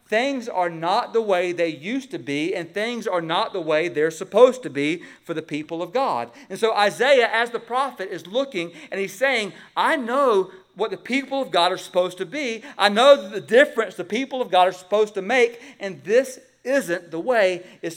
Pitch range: 155-225 Hz